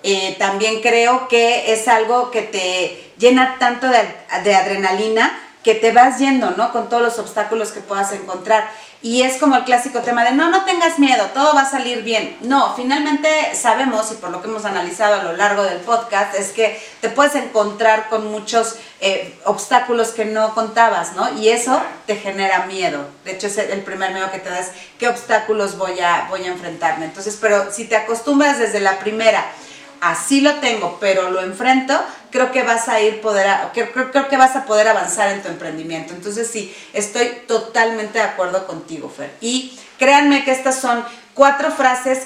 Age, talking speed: 40-59, 195 wpm